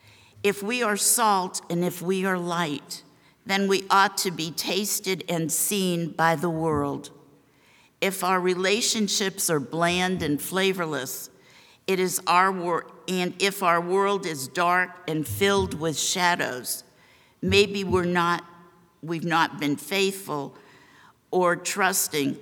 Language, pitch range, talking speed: English, 155-190 Hz, 135 wpm